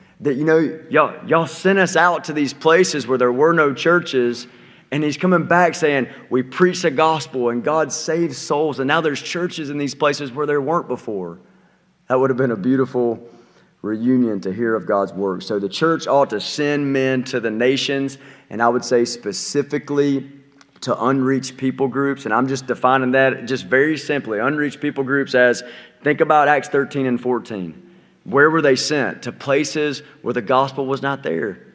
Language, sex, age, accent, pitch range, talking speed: English, male, 30-49, American, 125-150 Hz, 190 wpm